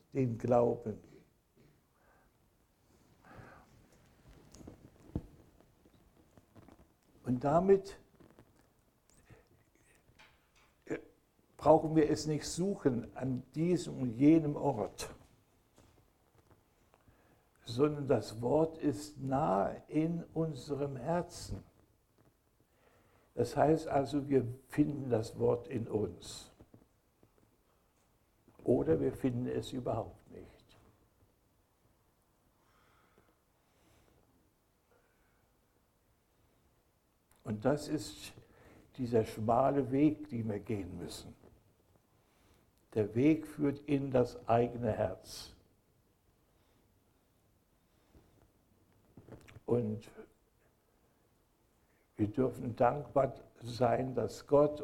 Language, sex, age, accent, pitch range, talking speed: German, male, 60-79, German, 110-140 Hz, 65 wpm